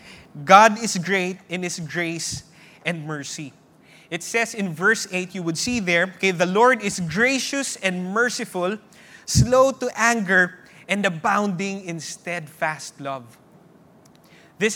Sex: male